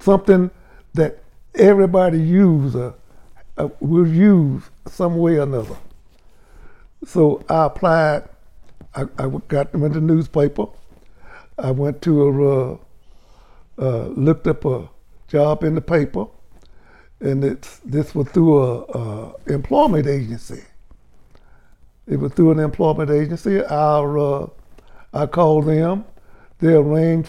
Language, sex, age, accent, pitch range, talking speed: English, male, 60-79, American, 135-170 Hz, 125 wpm